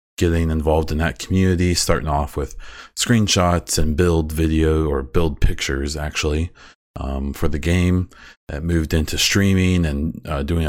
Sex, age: male, 30-49